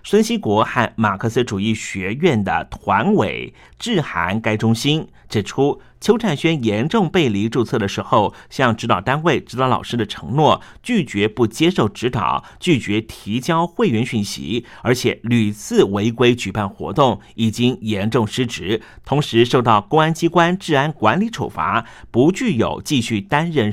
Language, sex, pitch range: Chinese, male, 105-145 Hz